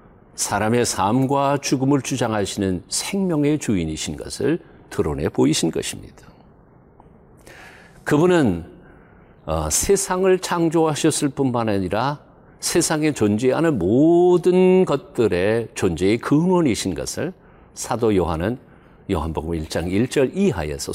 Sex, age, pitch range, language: male, 50-69, 105-160 Hz, Korean